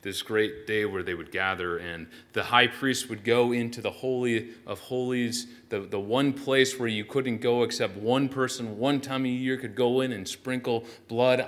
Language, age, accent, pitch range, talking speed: English, 30-49, American, 110-150 Hz, 205 wpm